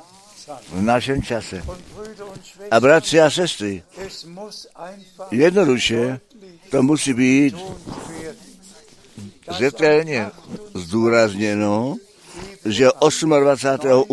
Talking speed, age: 65 wpm, 60-79